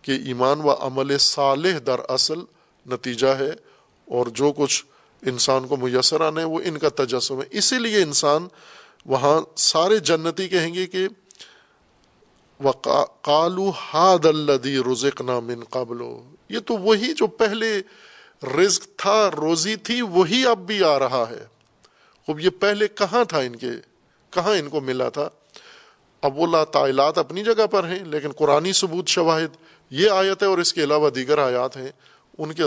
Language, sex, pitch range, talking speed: Urdu, male, 135-185 Hz, 150 wpm